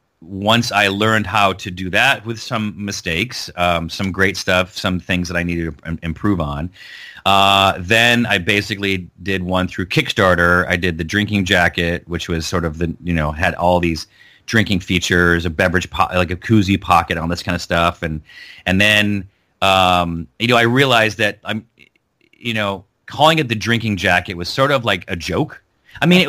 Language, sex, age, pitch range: English, male, 30-49, 90-115 Hz